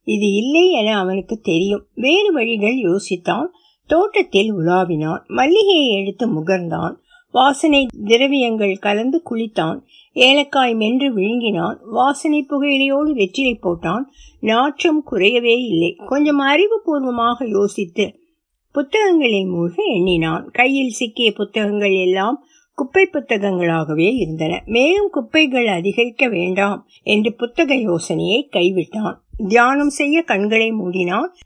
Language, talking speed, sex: Tamil, 95 wpm, female